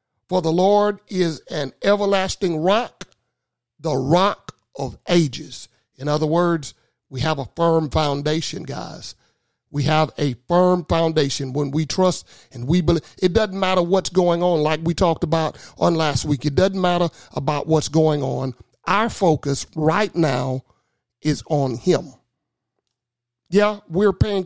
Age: 50-69